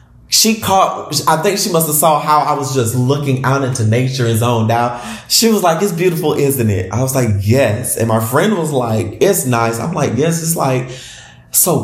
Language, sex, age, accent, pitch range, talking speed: English, male, 20-39, American, 120-170 Hz, 220 wpm